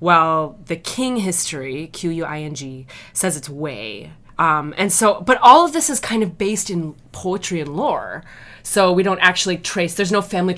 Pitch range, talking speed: 145-180 Hz, 170 wpm